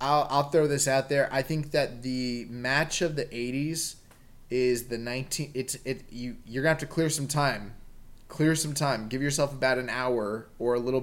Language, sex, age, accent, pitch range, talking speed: English, male, 20-39, American, 115-130 Hz, 220 wpm